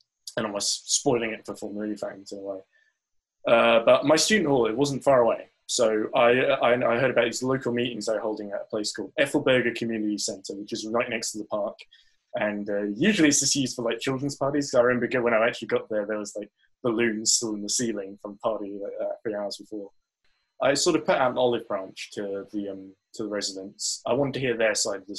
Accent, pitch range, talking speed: British, 105-120 Hz, 240 wpm